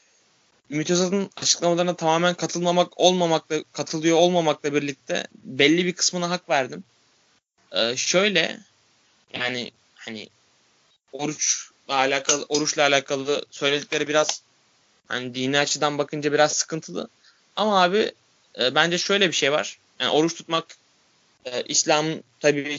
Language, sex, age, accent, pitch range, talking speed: Turkish, male, 20-39, native, 135-160 Hz, 115 wpm